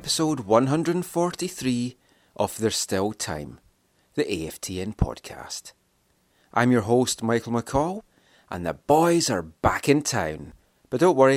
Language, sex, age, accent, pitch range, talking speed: English, male, 30-49, British, 105-125 Hz, 125 wpm